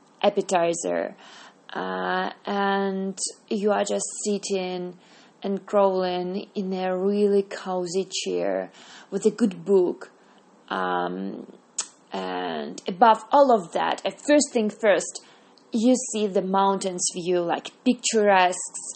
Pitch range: 185-235 Hz